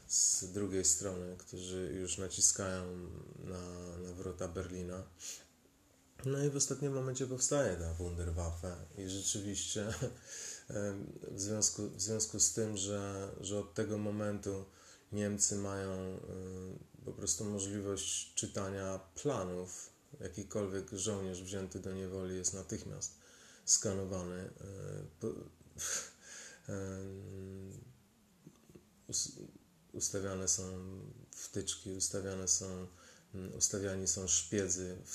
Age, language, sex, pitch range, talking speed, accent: 30-49, Polish, male, 95-100 Hz, 95 wpm, native